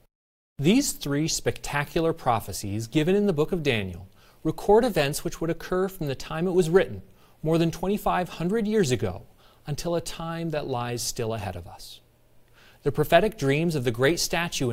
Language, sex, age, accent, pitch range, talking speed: English, male, 30-49, American, 120-175 Hz, 170 wpm